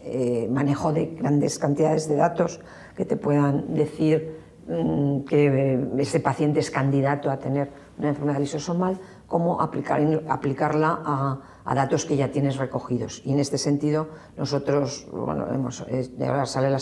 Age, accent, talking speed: 50-69, Spanish, 155 wpm